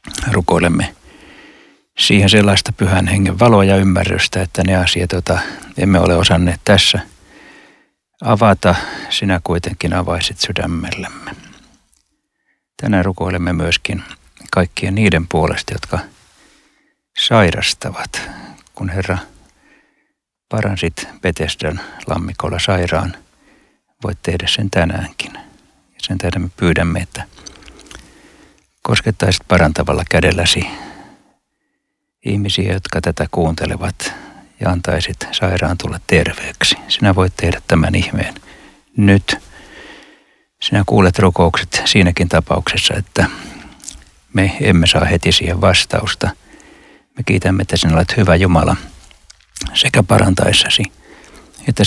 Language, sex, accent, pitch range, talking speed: Finnish, male, native, 85-95 Hz, 100 wpm